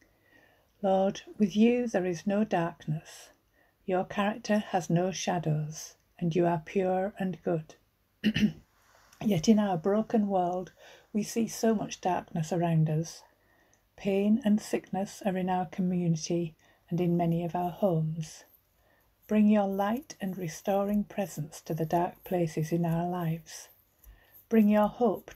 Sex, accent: female, British